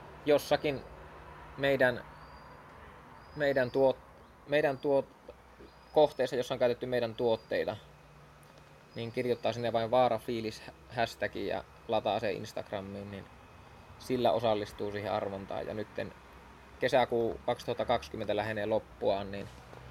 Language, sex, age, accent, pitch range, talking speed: Finnish, male, 20-39, native, 100-125 Hz, 100 wpm